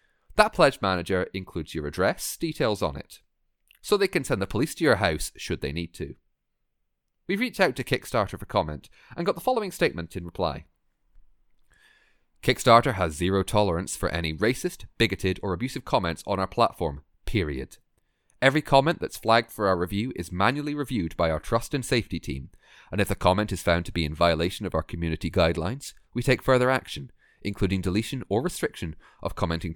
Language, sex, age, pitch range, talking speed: English, male, 30-49, 85-120 Hz, 185 wpm